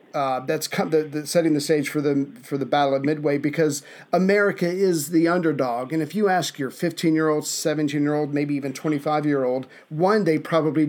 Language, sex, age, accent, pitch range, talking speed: English, male, 40-59, American, 145-175 Hz, 175 wpm